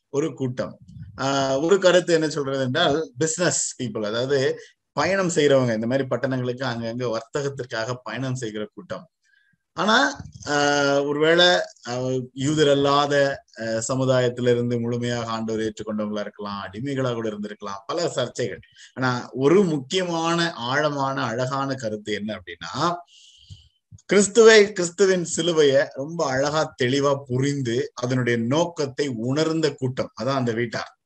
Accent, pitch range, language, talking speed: native, 120-160 Hz, Tamil, 110 wpm